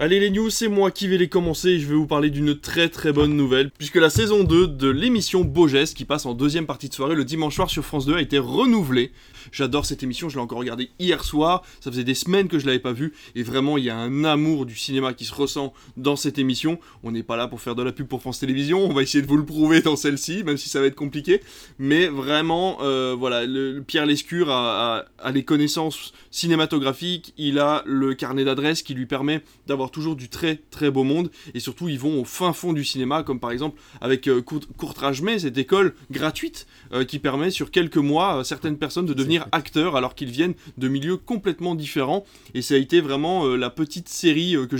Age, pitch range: 20-39, 135-160 Hz